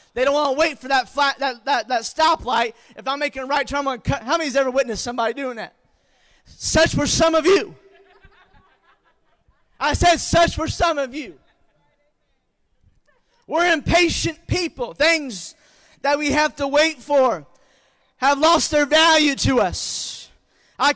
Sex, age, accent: male, 20-39, American